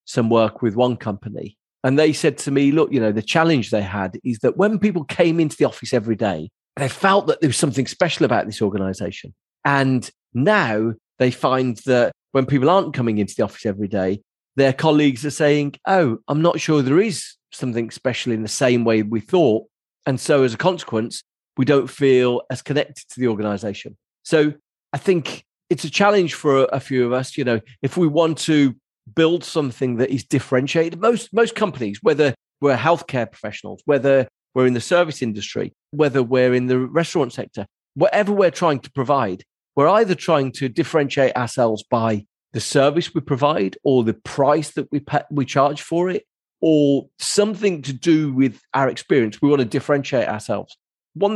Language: English